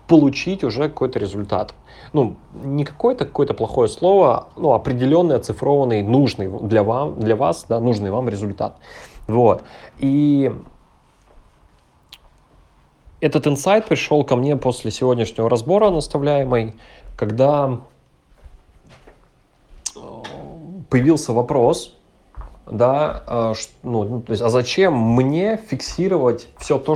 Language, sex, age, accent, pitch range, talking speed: Russian, male, 30-49, native, 115-150 Hz, 100 wpm